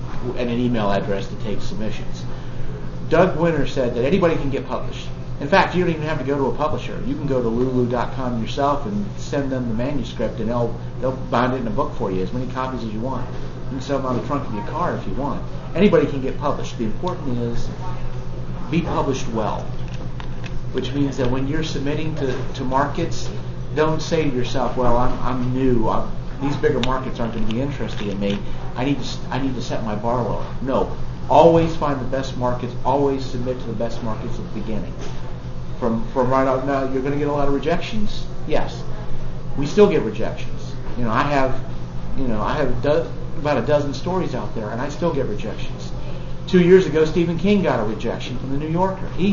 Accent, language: American, English